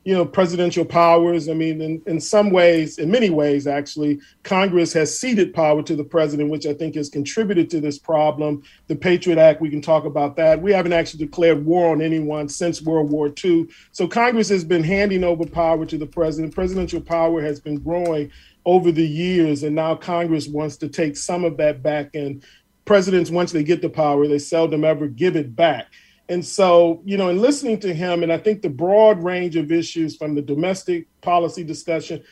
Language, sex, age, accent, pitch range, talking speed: English, male, 40-59, American, 155-175 Hz, 205 wpm